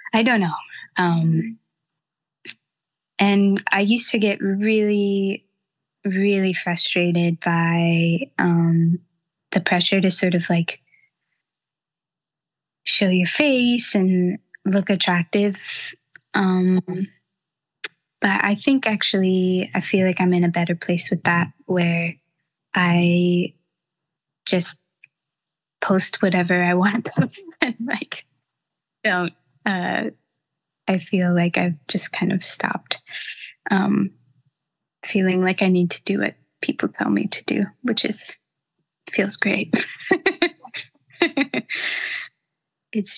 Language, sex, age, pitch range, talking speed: English, female, 20-39, 170-200 Hz, 110 wpm